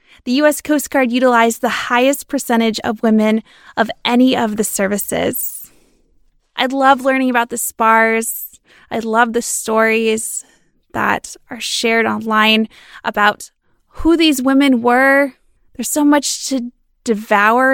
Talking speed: 130 wpm